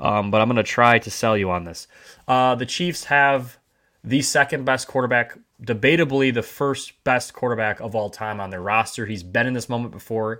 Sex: male